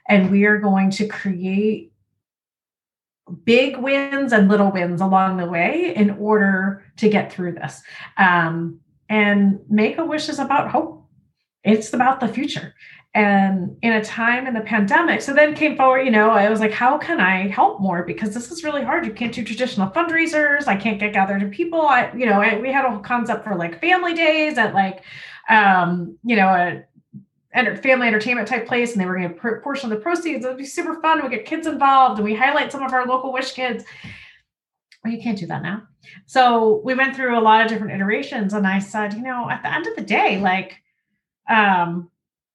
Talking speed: 205 wpm